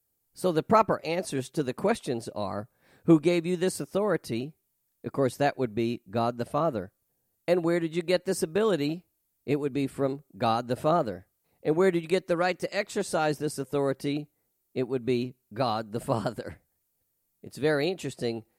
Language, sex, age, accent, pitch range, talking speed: English, male, 50-69, American, 130-175 Hz, 180 wpm